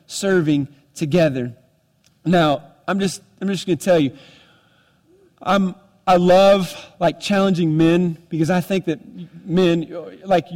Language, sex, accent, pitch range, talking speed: English, male, American, 145-180 Hz, 130 wpm